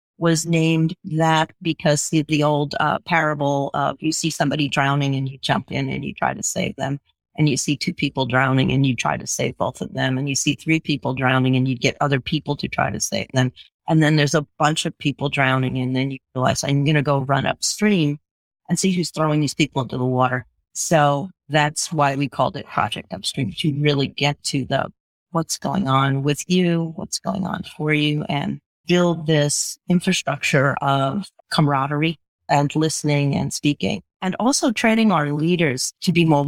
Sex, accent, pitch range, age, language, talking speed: female, American, 140-175 Hz, 40-59, English, 200 wpm